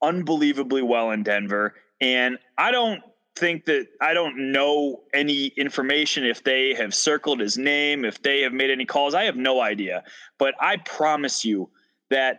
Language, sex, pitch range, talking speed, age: English, male, 130-175 Hz, 170 wpm, 20-39